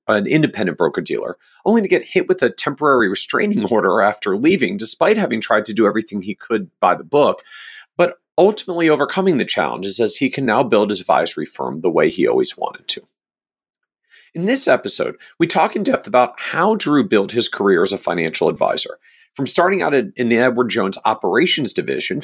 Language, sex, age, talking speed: English, male, 40-59, 190 wpm